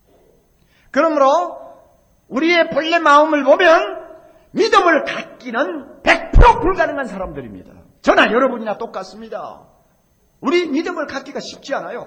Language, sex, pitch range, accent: Korean, male, 185-290 Hz, native